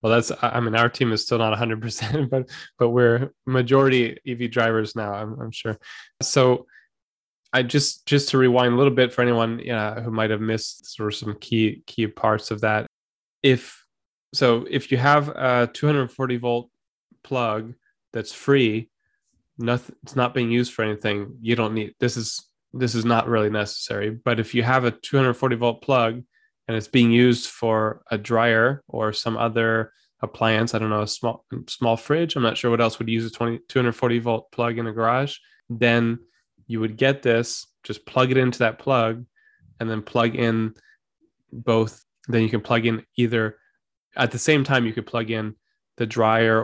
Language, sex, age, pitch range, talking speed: English, male, 10-29, 110-125 Hz, 185 wpm